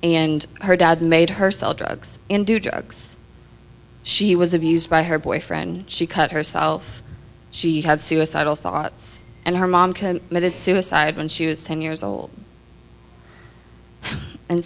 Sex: female